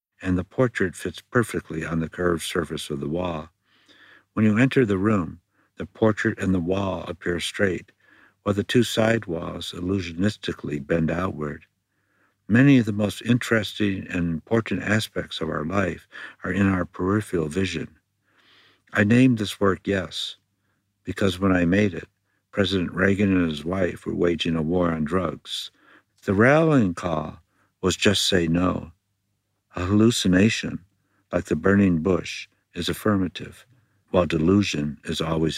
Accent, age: American, 60-79